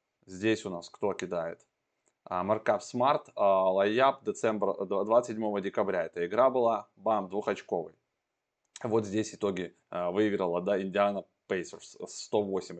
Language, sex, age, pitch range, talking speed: Russian, male, 20-39, 95-115 Hz, 110 wpm